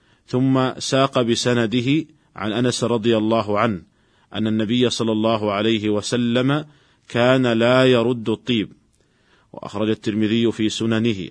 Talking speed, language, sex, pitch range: 115 wpm, Arabic, male, 105-120 Hz